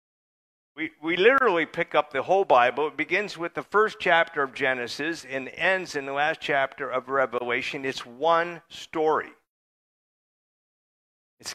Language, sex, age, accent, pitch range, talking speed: English, male, 50-69, American, 130-170 Hz, 145 wpm